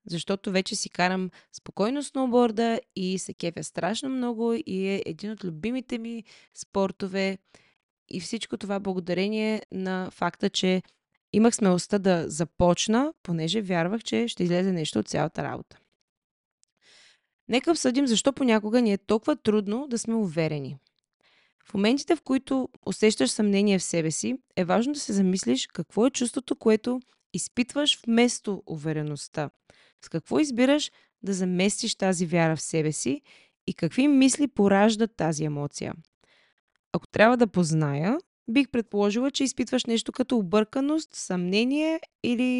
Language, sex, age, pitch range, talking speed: Bulgarian, female, 20-39, 185-245 Hz, 140 wpm